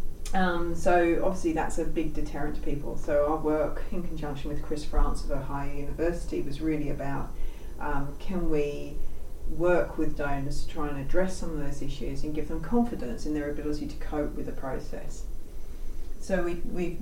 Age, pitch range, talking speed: 40-59, 140-165 Hz, 180 wpm